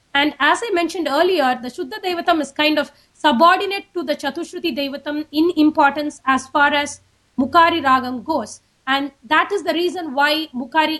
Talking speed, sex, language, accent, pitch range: 170 wpm, female, English, Indian, 275-340 Hz